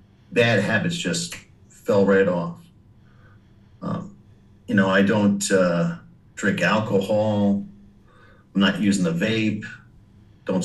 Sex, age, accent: male, 50-69, American